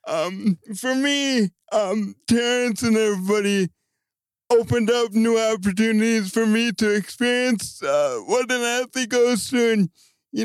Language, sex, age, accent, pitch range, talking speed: English, male, 50-69, American, 205-235 Hz, 130 wpm